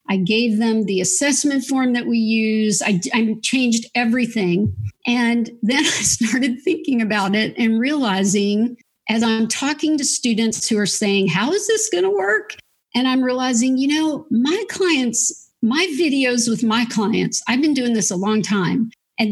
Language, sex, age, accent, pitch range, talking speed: English, female, 50-69, American, 205-255 Hz, 175 wpm